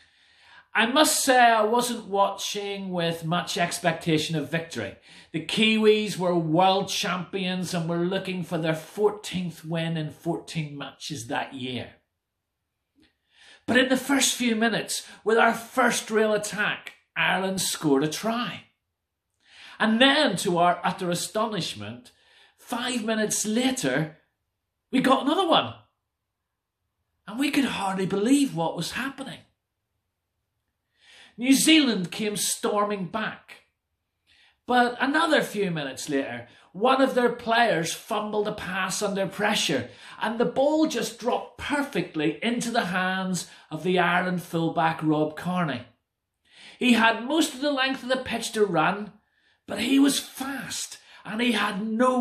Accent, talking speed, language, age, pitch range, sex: British, 135 wpm, English, 40-59, 160-240 Hz, male